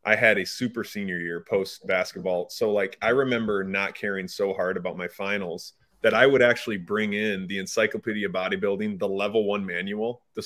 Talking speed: 190 wpm